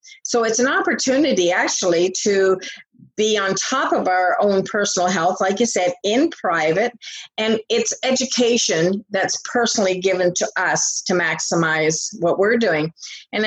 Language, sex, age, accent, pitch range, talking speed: English, female, 50-69, American, 180-225 Hz, 145 wpm